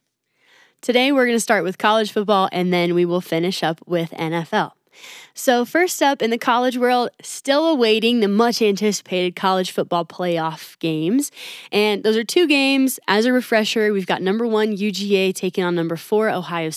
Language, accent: English, American